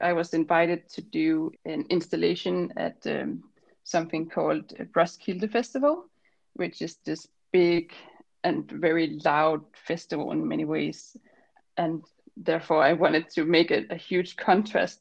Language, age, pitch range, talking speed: English, 20-39, 165-200 Hz, 140 wpm